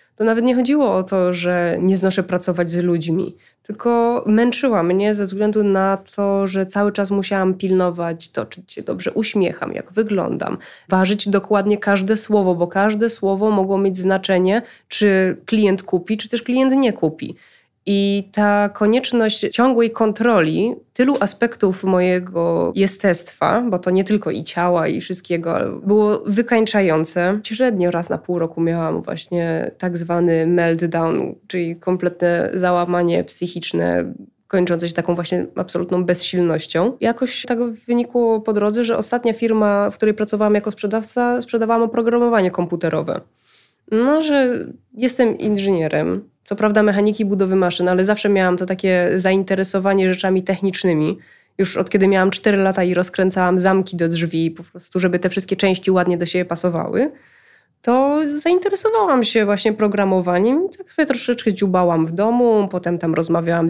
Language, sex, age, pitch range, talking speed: Polish, female, 20-39, 180-225 Hz, 145 wpm